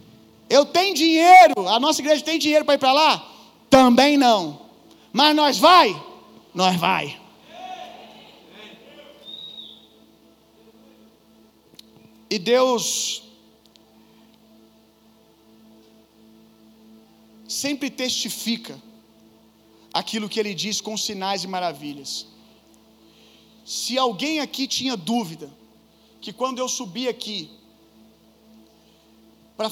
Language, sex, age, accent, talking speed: Gujarati, male, 40-59, Brazilian, 85 wpm